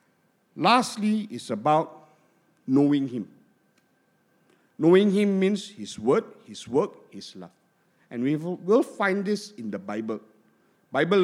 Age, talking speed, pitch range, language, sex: 50-69, 125 wpm, 135-205 Hz, English, male